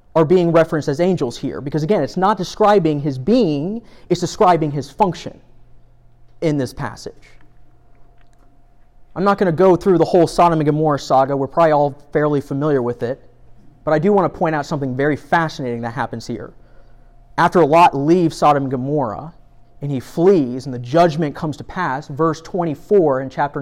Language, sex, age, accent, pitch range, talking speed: English, male, 30-49, American, 125-170 Hz, 180 wpm